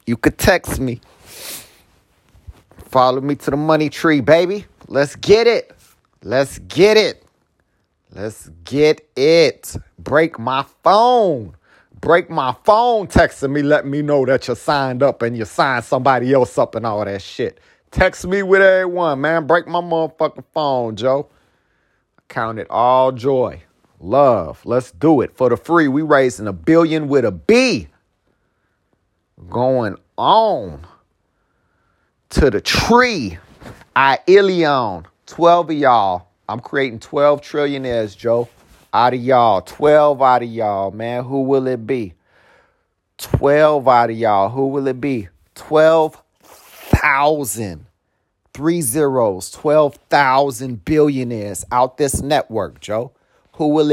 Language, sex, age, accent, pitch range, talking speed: English, male, 40-59, American, 115-155 Hz, 135 wpm